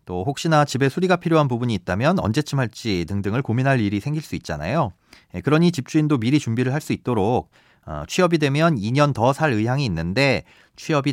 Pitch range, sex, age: 100-150 Hz, male, 40-59